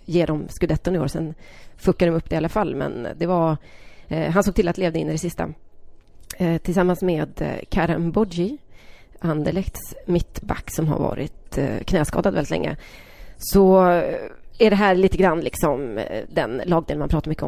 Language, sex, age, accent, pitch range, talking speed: Swedish, female, 30-49, native, 160-195 Hz, 190 wpm